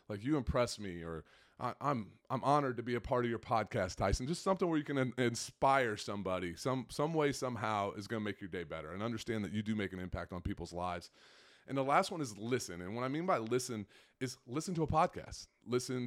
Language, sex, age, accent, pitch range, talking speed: English, male, 30-49, American, 105-135 Hz, 245 wpm